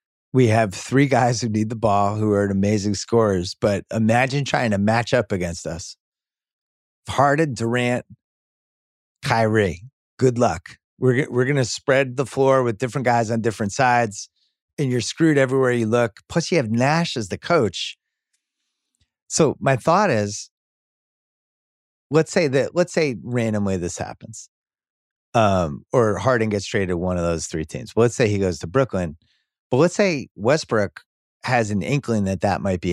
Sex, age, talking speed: male, 30-49, 165 wpm